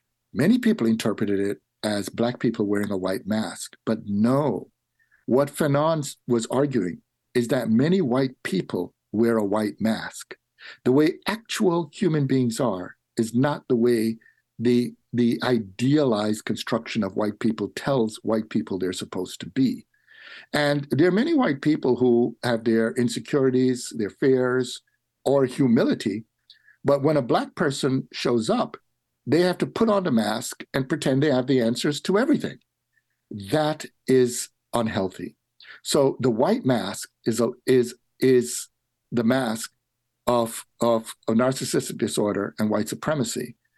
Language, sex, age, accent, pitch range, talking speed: English, male, 60-79, American, 115-145 Hz, 145 wpm